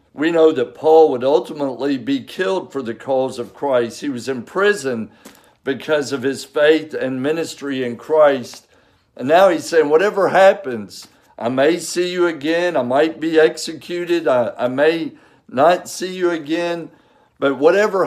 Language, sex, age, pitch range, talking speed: English, male, 50-69, 130-165 Hz, 165 wpm